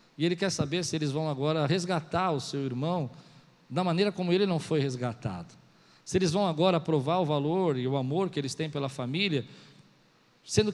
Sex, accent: male, Brazilian